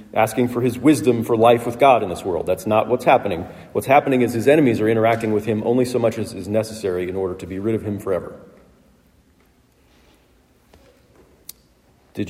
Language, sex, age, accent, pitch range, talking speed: English, male, 40-59, American, 105-130 Hz, 190 wpm